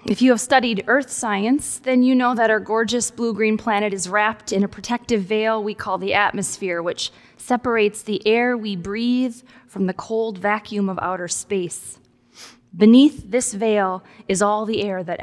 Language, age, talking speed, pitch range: English, 20-39, 175 wpm, 195-245 Hz